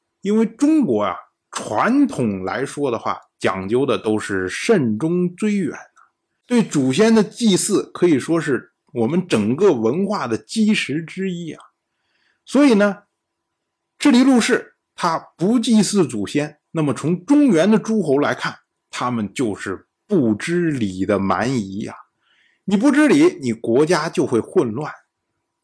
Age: 50-69